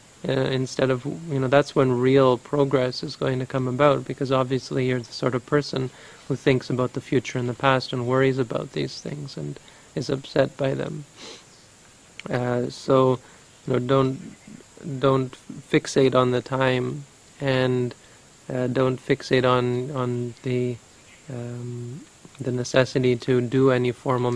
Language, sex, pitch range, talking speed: English, male, 125-135 Hz, 155 wpm